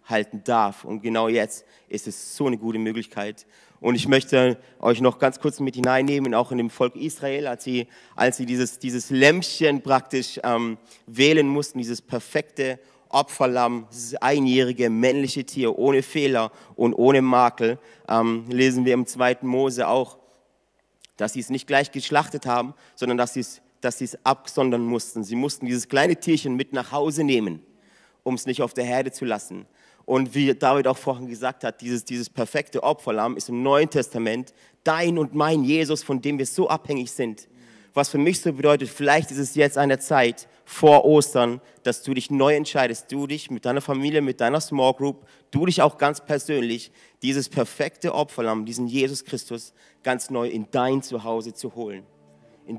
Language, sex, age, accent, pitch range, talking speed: German, male, 30-49, German, 120-140 Hz, 180 wpm